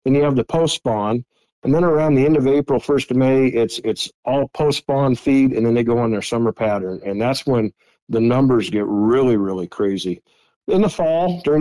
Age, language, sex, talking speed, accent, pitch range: 50-69, English, male, 220 wpm, American, 110-135 Hz